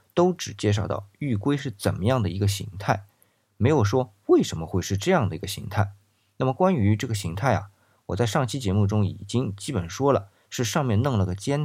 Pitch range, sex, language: 100-130 Hz, male, Chinese